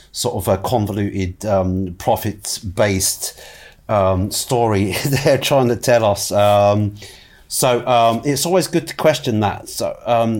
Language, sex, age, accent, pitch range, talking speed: English, male, 40-59, British, 100-130 Hz, 145 wpm